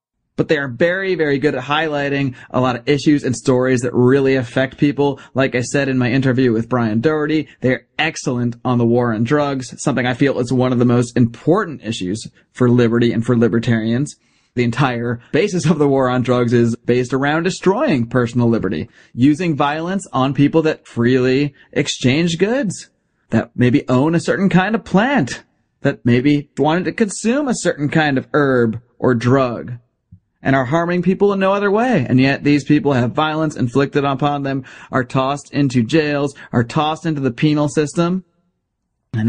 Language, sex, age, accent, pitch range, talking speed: English, male, 30-49, American, 125-155 Hz, 180 wpm